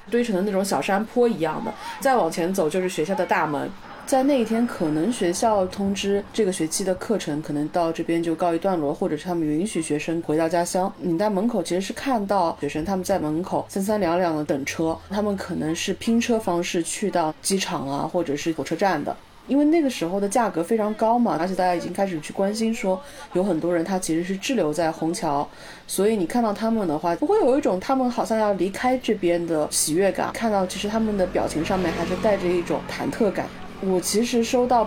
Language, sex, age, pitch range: Chinese, female, 30-49, 175-235 Hz